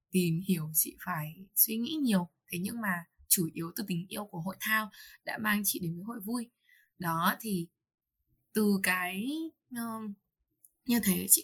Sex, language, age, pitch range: female, Vietnamese, 20-39, 180-235 Hz